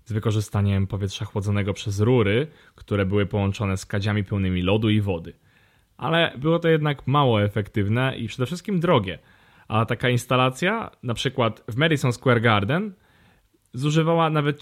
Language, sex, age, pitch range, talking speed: Polish, male, 20-39, 105-135 Hz, 150 wpm